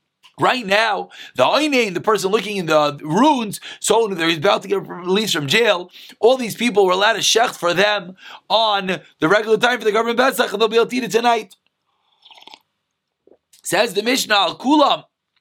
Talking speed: 150 wpm